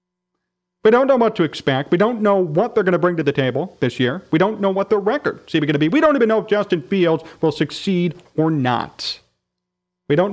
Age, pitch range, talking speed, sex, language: 40-59, 135-195 Hz, 245 wpm, male, English